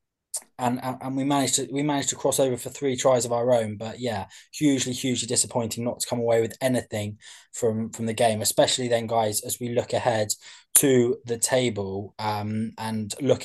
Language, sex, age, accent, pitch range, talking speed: English, male, 20-39, British, 110-130 Hz, 195 wpm